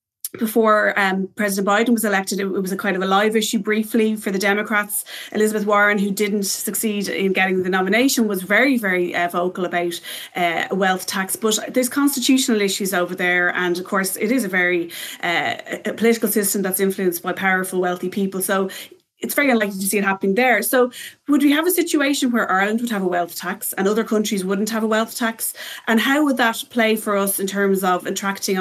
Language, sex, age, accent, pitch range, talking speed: English, female, 30-49, Irish, 190-225 Hz, 210 wpm